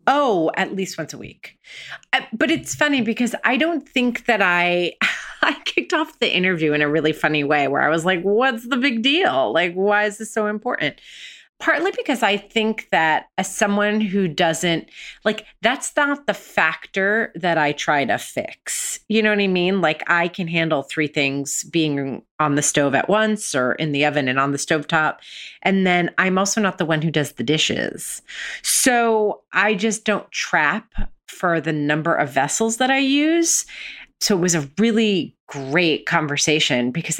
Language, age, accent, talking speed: English, 30-49, American, 185 wpm